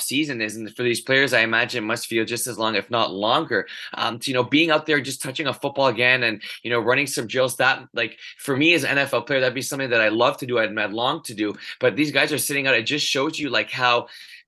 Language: English